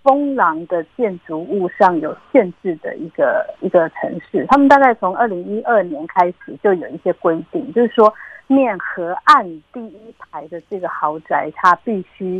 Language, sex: Chinese, female